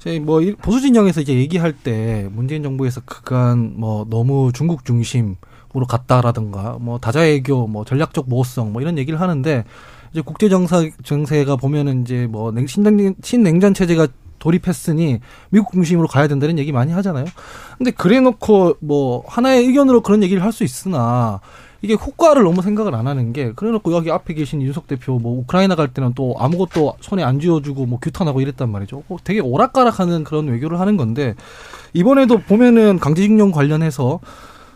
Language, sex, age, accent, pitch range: Korean, male, 20-39, native, 130-190 Hz